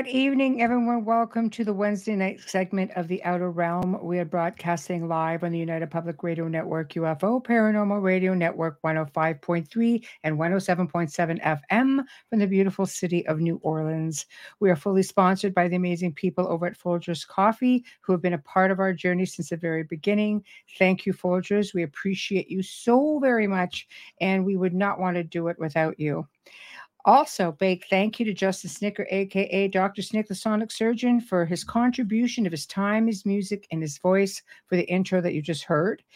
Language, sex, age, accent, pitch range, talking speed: English, female, 60-79, American, 170-205 Hz, 185 wpm